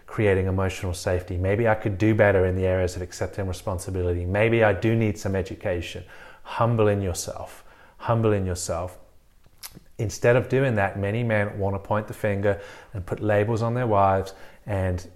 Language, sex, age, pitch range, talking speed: English, male, 30-49, 95-110 Hz, 175 wpm